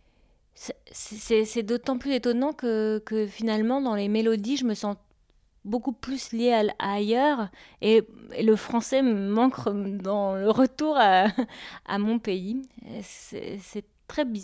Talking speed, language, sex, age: 155 wpm, French, female, 30-49